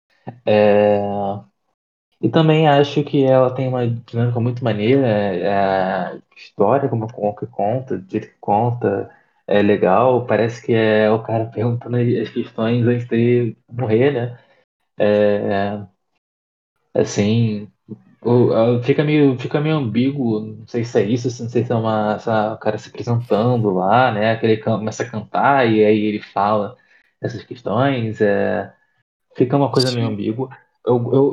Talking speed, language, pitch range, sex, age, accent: 150 wpm, Portuguese, 105-125 Hz, male, 20-39, Brazilian